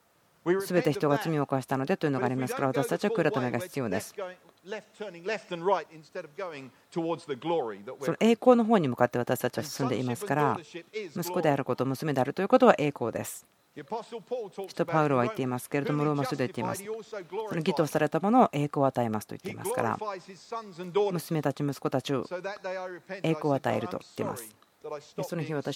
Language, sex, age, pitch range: Japanese, female, 40-59, 135-180 Hz